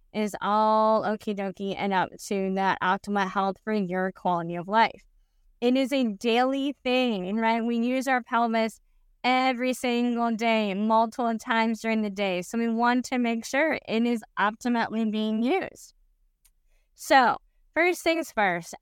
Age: 20-39